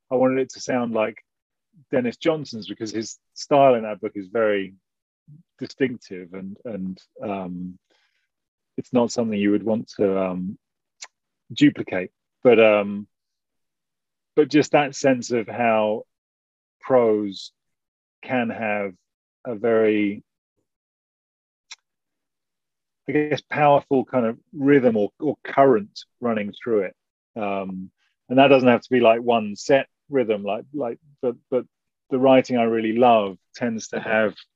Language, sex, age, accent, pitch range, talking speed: English, male, 30-49, British, 100-125 Hz, 135 wpm